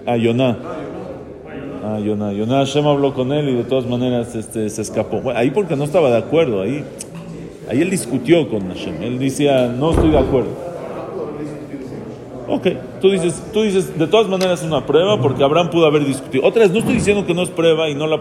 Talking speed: 200 wpm